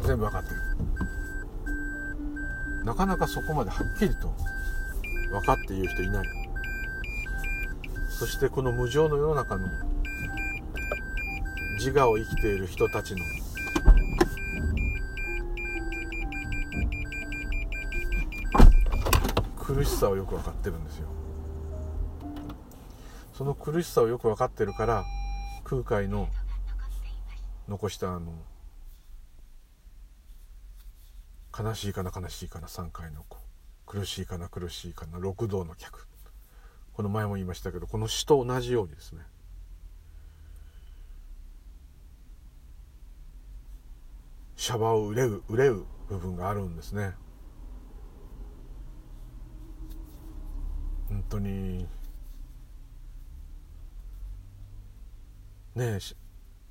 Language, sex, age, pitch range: Japanese, male, 50-69, 75-100 Hz